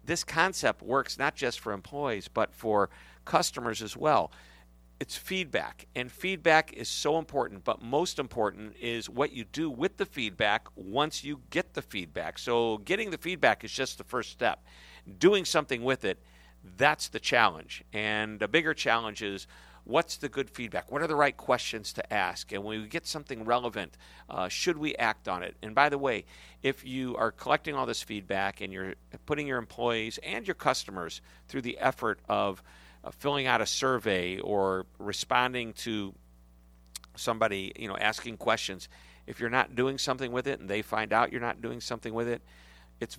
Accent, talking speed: American, 185 wpm